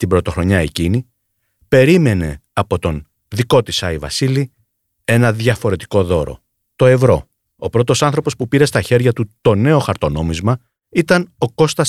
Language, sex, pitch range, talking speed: Greek, male, 95-130 Hz, 145 wpm